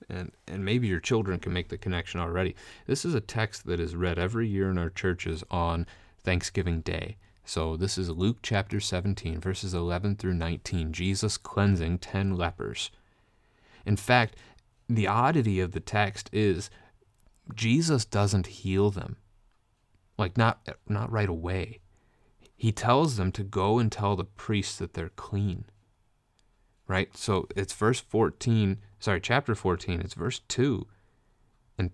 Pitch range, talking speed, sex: 95-115 Hz, 150 wpm, male